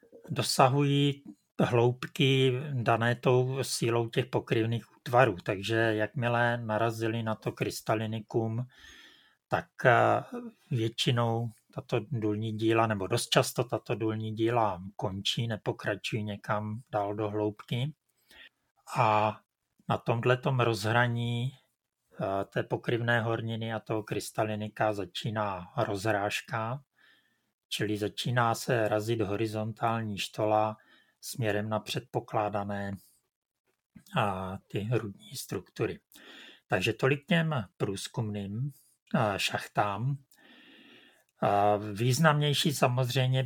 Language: Czech